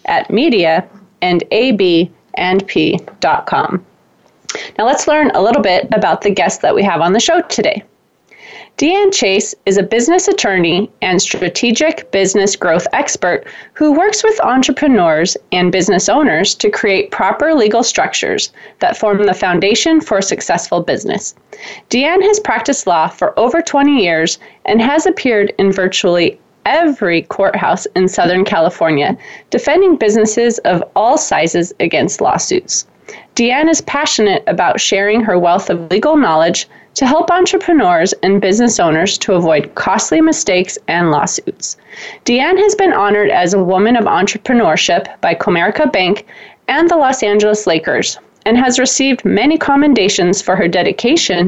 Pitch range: 195-310 Hz